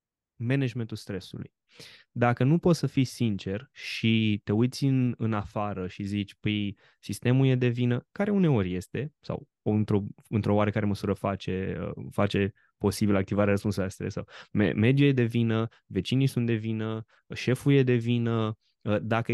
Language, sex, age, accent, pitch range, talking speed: Romanian, male, 20-39, native, 100-125 Hz, 155 wpm